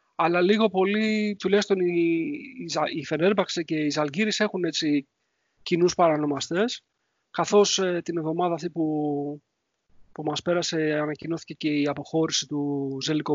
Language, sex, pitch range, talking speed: English, male, 145-190 Hz, 115 wpm